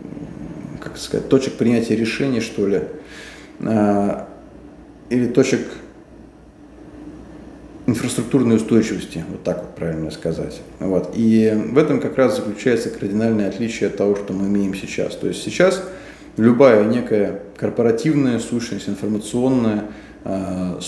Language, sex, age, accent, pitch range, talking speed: Russian, male, 20-39, native, 100-125 Hz, 115 wpm